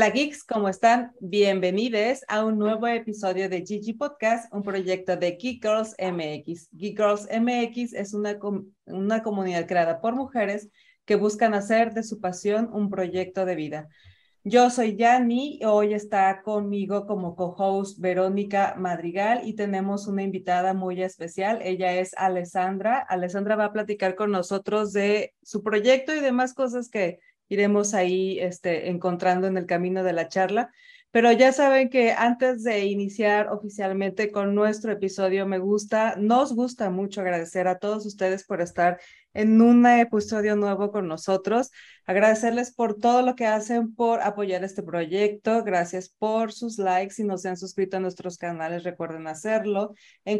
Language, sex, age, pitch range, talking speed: Spanish, female, 30-49, 185-225 Hz, 160 wpm